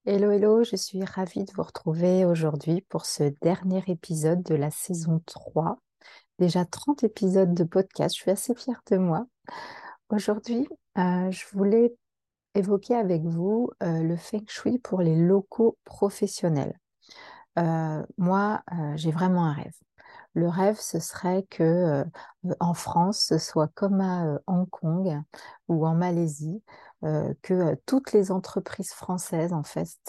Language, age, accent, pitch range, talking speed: French, 40-59, French, 160-195 Hz, 155 wpm